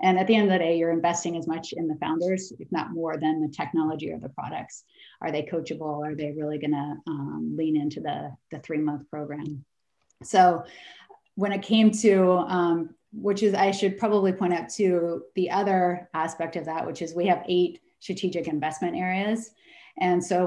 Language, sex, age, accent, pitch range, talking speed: English, female, 30-49, American, 160-185 Hz, 195 wpm